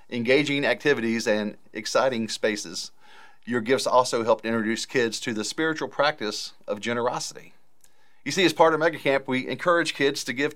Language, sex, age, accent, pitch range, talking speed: English, male, 40-59, American, 110-140 Hz, 160 wpm